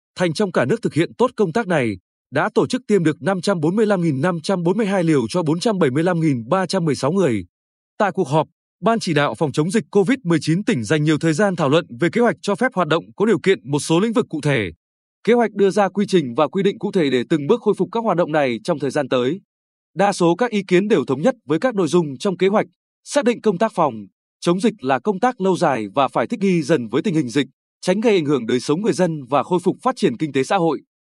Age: 20-39